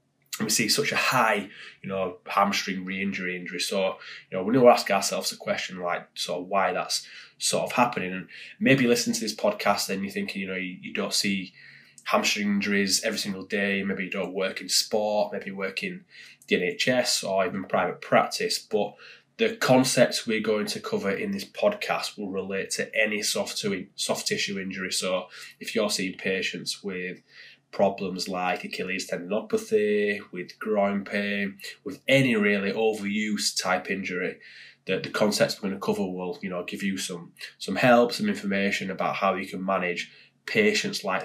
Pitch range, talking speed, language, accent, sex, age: 95-140 Hz, 185 wpm, English, British, male, 20-39